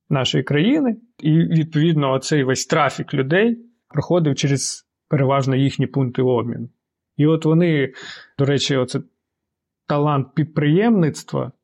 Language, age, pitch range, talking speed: Ukrainian, 30-49, 135-165 Hz, 115 wpm